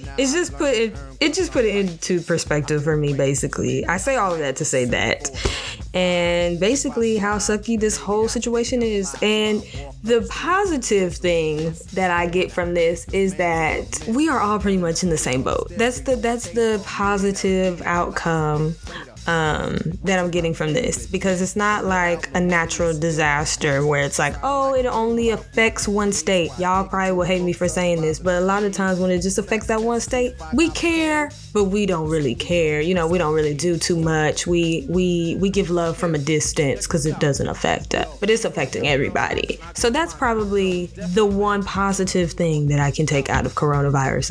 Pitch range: 165-210 Hz